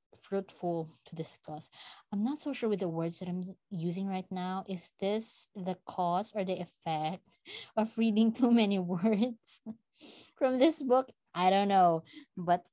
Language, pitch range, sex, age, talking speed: English, 175-225 Hz, female, 20-39, 160 wpm